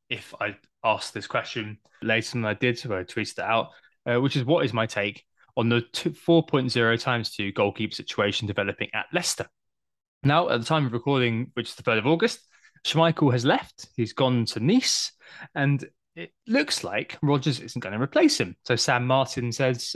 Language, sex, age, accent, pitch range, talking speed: English, male, 20-39, British, 110-140 Hz, 190 wpm